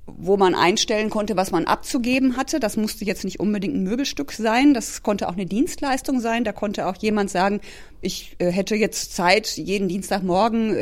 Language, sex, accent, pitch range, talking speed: German, female, German, 190-235 Hz, 185 wpm